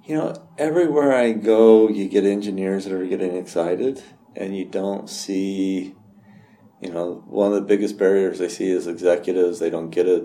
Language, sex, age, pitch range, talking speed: English, male, 40-59, 95-110 Hz, 180 wpm